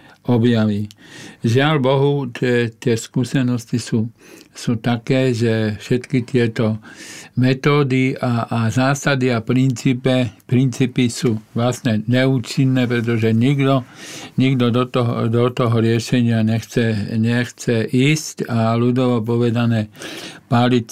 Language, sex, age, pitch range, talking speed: Slovak, male, 60-79, 115-130 Hz, 105 wpm